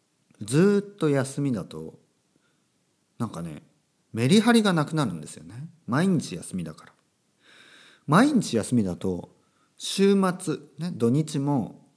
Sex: male